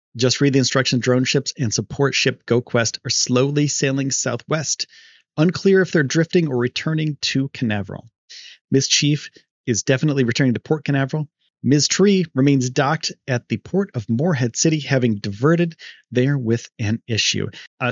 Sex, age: male, 30-49